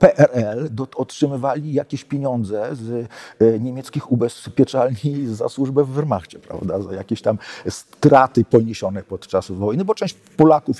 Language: Polish